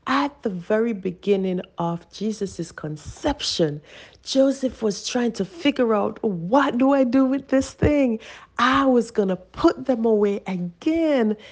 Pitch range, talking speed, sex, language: 180-260 Hz, 145 wpm, female, English